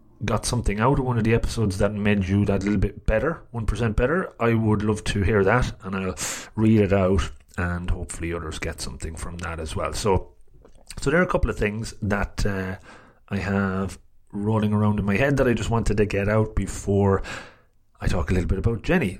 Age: 30-49